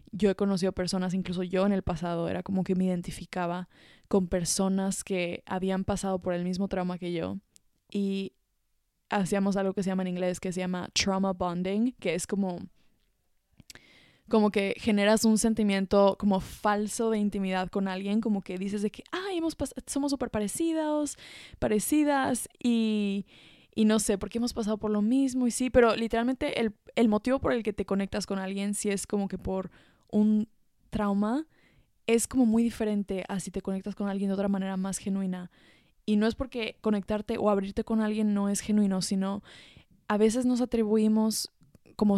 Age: 20-39